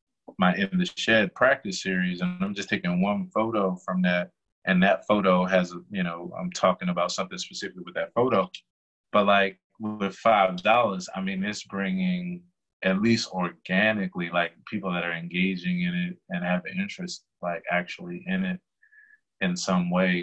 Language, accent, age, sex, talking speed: English, American, 20-39, male, 170 wpm